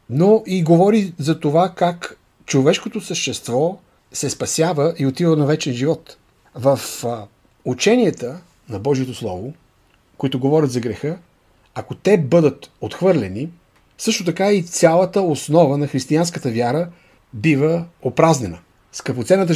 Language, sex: Bulgarian, male